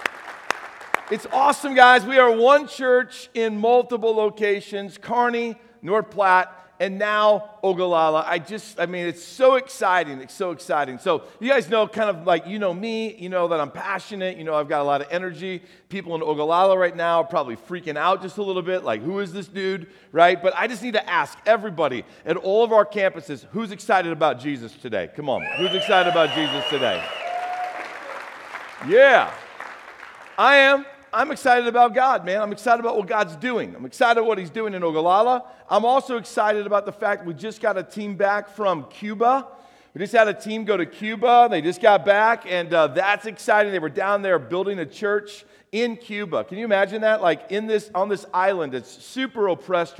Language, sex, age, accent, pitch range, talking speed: English, male, 50-69, American, 175-225 Hz, 200 wpm